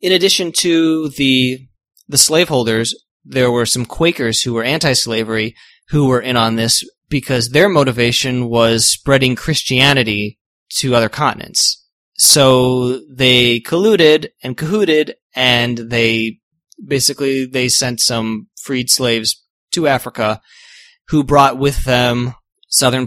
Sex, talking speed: male, 120 wpm